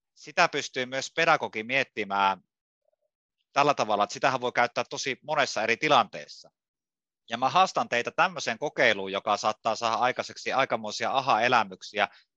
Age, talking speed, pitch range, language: 30-49, 130 wpm, 115-150 Hz, Finnish